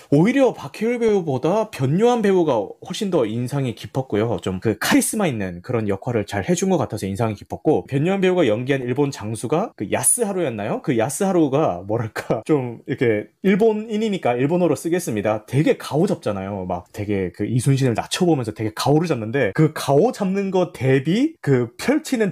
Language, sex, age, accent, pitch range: Korean, male, 30-49, native, 125-200 Hz